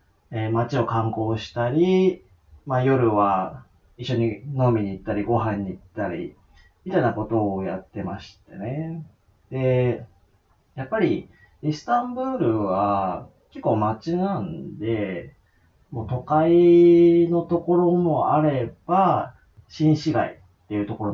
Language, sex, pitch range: Japanese, male, 100-150 Hz